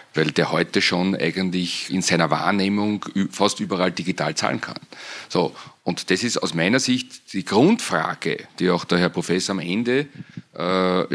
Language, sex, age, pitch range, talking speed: German, male, 40-59, 95-115 Hz, 160 wpm